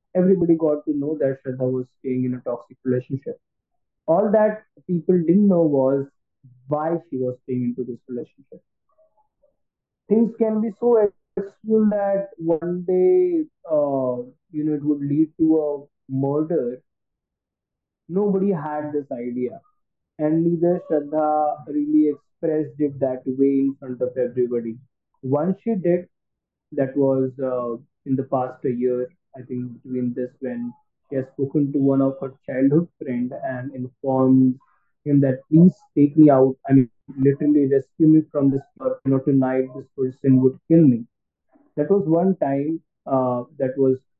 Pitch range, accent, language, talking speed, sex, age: 130-155 Hz, Indian, English, 155 wpm, male, 20-39